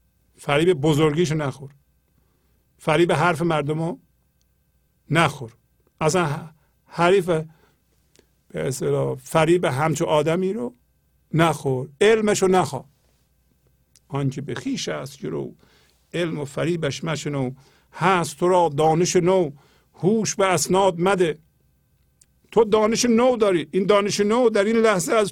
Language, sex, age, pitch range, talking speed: Persian, male, 50-69, 135-185 Hz, 110 wpm